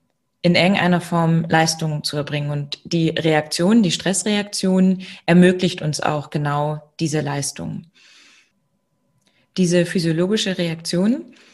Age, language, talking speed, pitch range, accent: 20-39, German, 105 wpm, 160-180 Hz, German